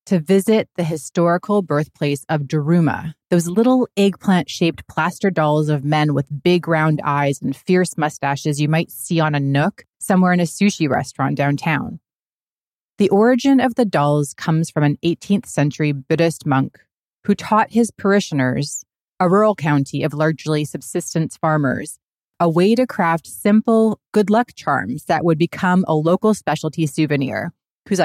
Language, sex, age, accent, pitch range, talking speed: English, female, 30-49, American, 150-185 Hz, 155 wpm